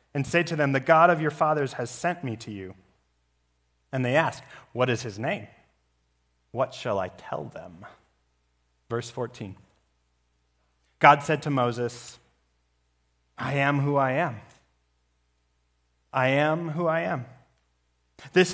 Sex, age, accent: male, 30-49, American